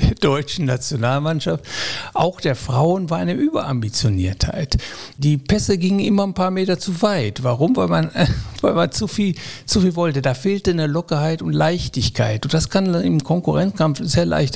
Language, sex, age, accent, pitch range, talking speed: German, male, 60-79, German, 130-165 Hz, 170 wpm